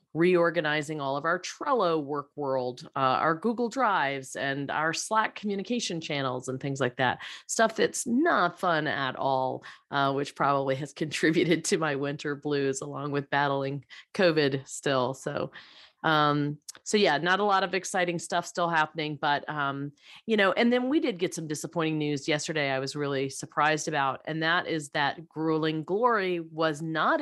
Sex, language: female, English